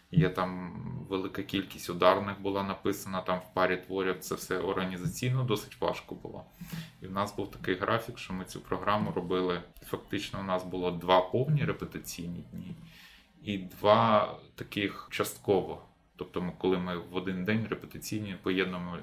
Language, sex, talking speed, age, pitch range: Ukrainian, male, 155 wpm, 20-39, 90-105 Hz